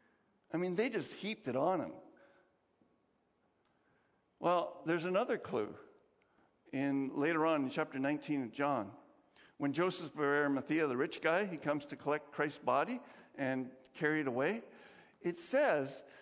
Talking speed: 145 wpm